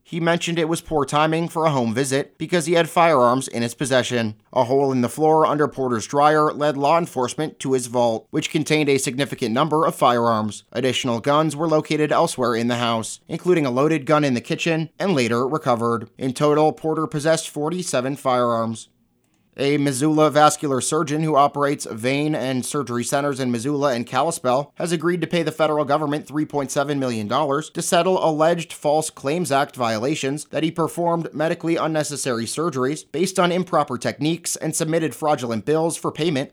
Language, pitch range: English, 125-160 Hz